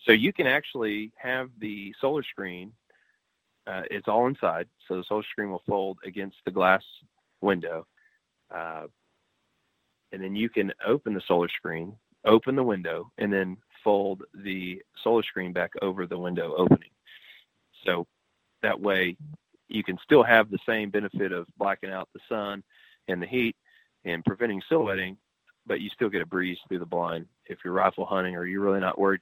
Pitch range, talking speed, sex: 90-105 Hz, 175 wpm, male